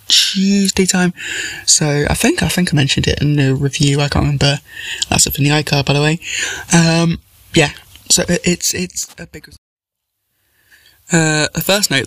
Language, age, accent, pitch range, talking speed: English, 20-39, British, 140-165 Hz, 180 wpm